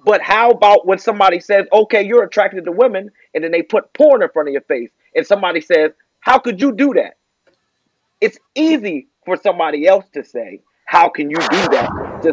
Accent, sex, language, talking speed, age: American, male, English, 200 wpm, 30-49